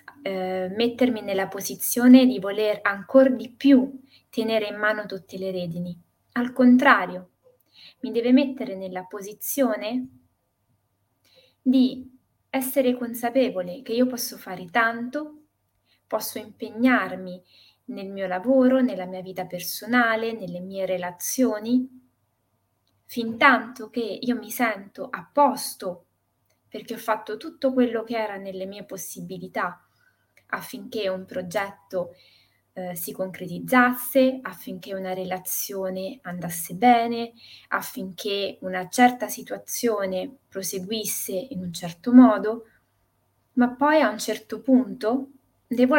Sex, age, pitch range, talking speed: female, 20-39, 180-250 Hz, 115 wpm